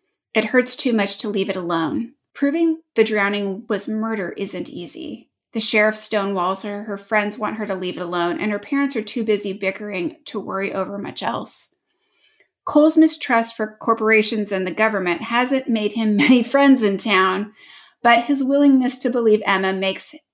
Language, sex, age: English, female, 30-49